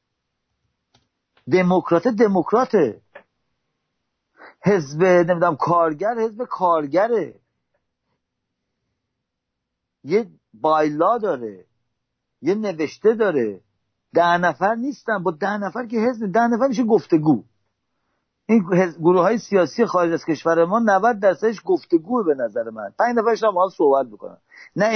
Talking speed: 110 wpm